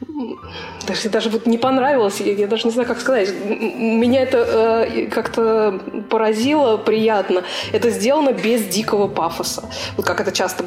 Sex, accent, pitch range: female, native, 190-240 Hz